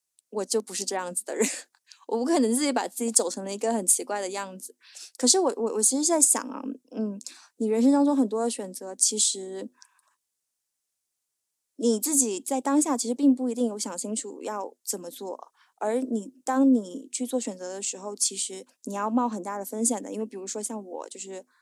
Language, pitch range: Chinese, 200-250 Hz